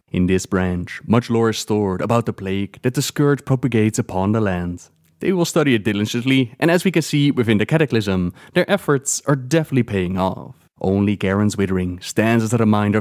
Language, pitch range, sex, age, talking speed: English, 95-125 Hz, male, 20-39, 200 wpm